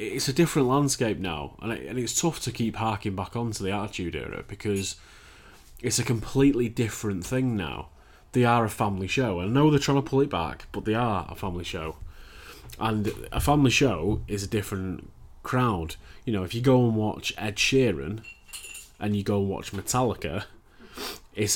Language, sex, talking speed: English, male, 190 wpm